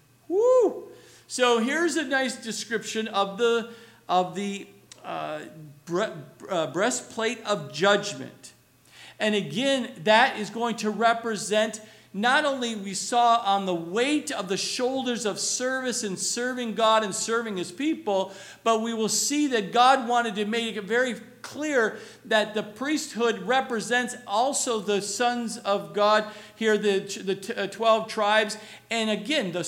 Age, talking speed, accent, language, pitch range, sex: 50-69, 150 wpm, American, English, 200-245 Hz, male